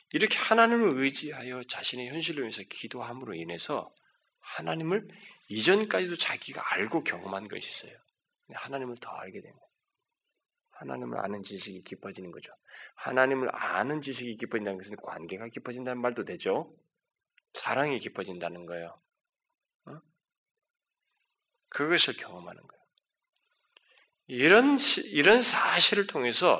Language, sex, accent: Korean, male, native